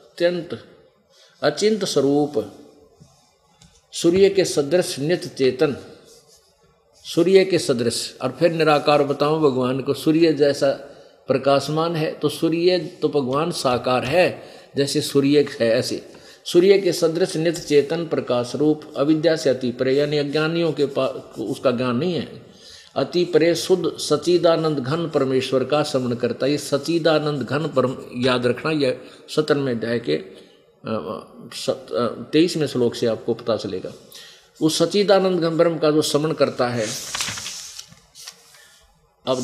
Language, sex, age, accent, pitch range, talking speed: Hindi, male, 50-69, native, 135-165 Hz, 130 wpm